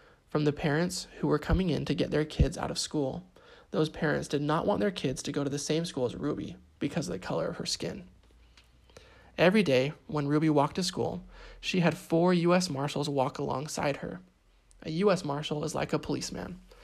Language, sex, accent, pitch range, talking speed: English, male, American, 145-180 Hz, 205 wpm